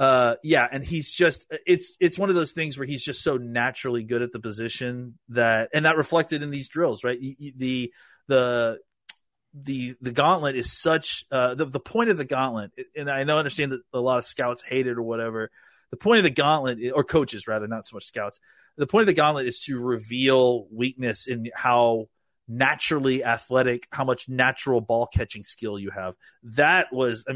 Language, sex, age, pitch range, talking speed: English, male, 30-49, 115-140 Hz, 200 wpm